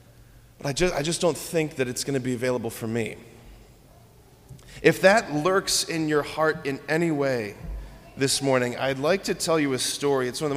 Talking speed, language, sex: 200 wpm, English, male